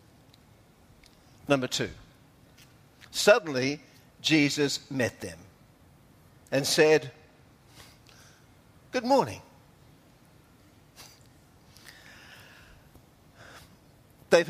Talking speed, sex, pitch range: 45 wpm, male, 140-210 Hz